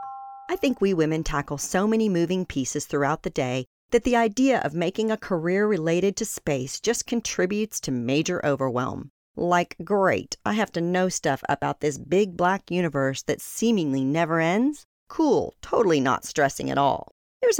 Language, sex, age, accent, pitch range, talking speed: English, female, 40-59, American, 150-220 Hz, 170 wpm